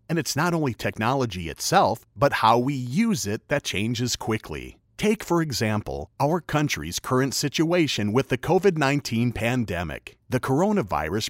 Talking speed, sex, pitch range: 145 wpm, male, 105-155 Hz